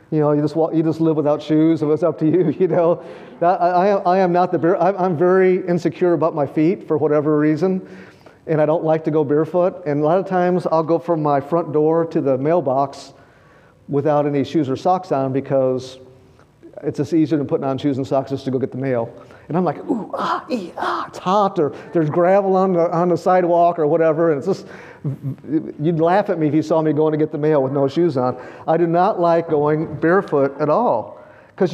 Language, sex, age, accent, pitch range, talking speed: English, male, 50-69, American, 135-175 Hz, 235 wpm